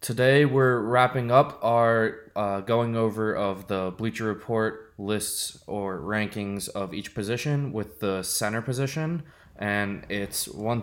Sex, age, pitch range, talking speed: male, 20-39, 100-120 Hz, 140 wpm